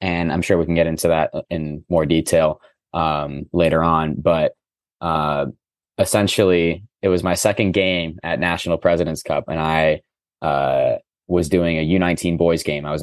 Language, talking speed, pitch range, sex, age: English, 170 wpm, 80-90 Hz, male, 20-39